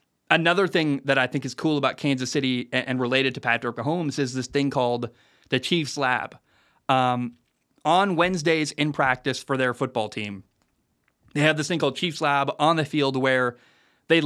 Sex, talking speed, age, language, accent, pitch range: male, 180 wpm, 20-39, English, American, 130-170 Hz